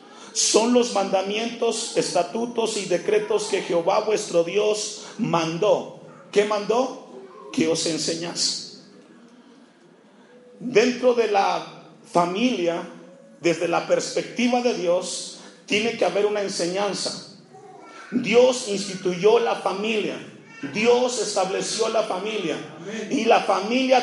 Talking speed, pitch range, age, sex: 100 wpm, 200-245 Hz, 40-59, male